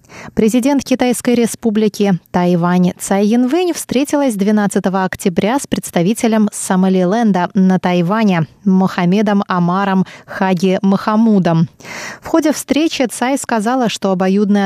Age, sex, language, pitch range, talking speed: 20-39, female, Russian, 185-235 Hz, 100 wpm